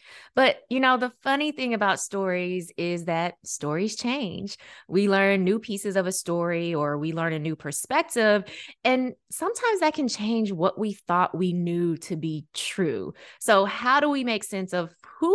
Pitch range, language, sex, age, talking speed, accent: 160-210 Hz, English, female, 20-39, 180 wpm, American